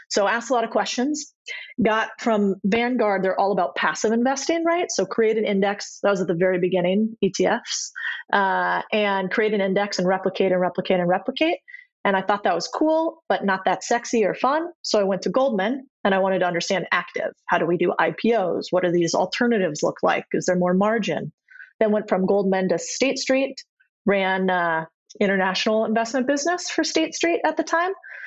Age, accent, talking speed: 30-49, American, 195 wpm